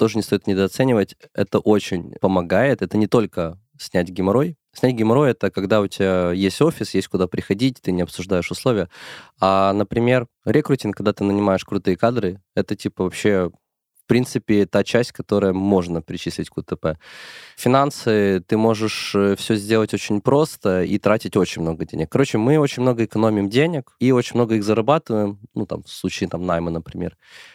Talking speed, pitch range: 170 wpm, 95-125 Hz